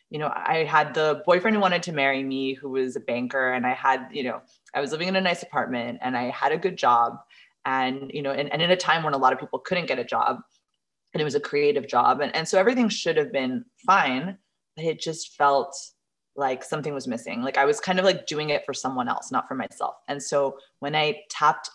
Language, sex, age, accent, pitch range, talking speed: English, female, 20-39, American, 135-185 Hz, 250 wpm